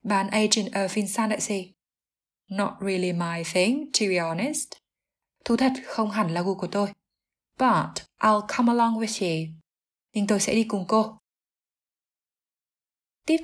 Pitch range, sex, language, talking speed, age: 185-240 Hz, female, Vietnamese, 145 wpm, 20-39